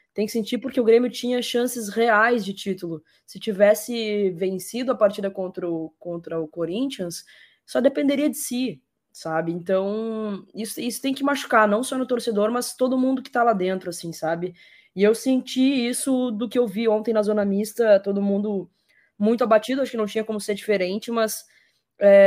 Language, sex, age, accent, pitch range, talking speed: Portuguese, female, 20-39, Brazilian, 180-225 Hz, 190 wpm